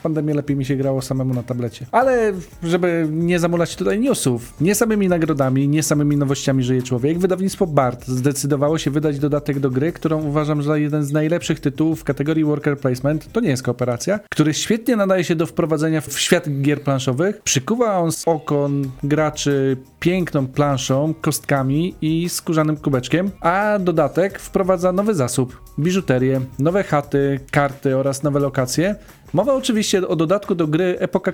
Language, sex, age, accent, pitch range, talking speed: Polish, male, 40-59, native, 140-175 Hz, 165 wpm